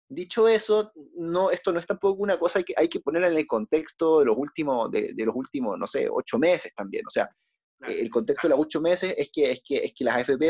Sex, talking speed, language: male, 255 wpm, Spanish